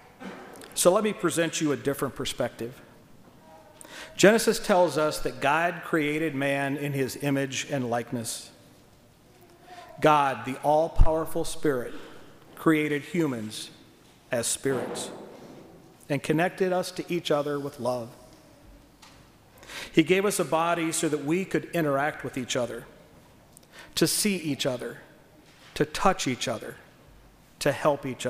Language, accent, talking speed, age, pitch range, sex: English, American, 125 wpm, 40-59, 135-170 Hz, male